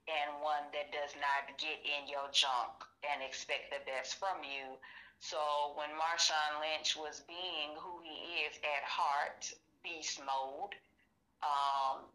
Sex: female